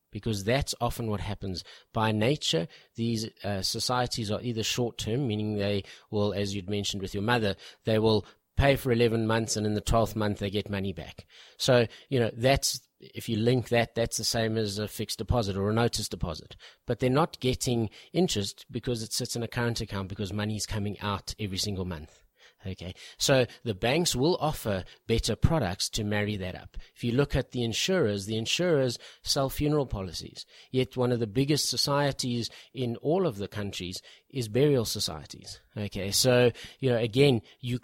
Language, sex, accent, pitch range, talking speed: English, male, Australian, 105-125 Hz, 190 wpm